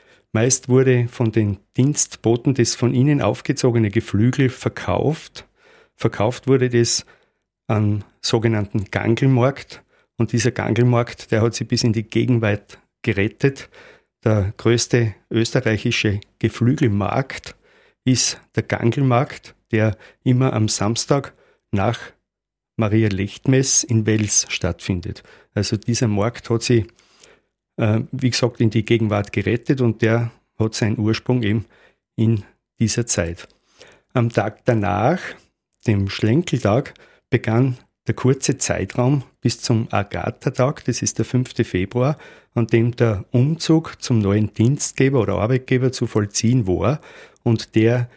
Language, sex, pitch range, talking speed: German, male, 110-125 Hz, 120 wpm